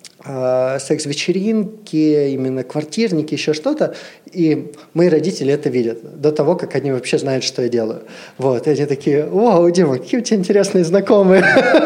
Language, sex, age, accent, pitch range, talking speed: Russian, male, 20-39, native, 125-165 Hz, 150 wpm